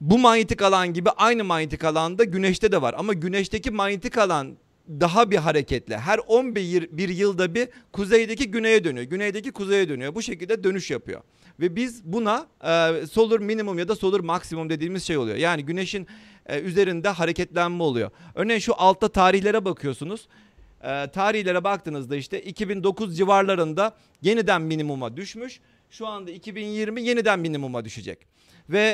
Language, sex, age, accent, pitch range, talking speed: Turkish, male, 40-59, native, 165-215 Hz, 155 wpm